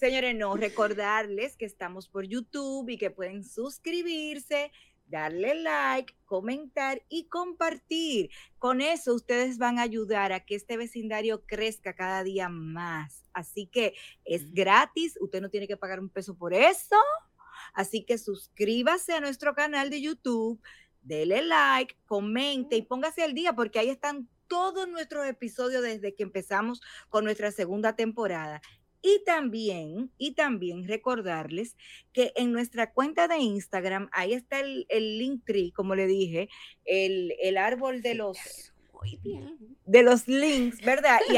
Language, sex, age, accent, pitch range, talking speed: Spanish, female, 30-49, American, 195-270 Hz, 145 wpm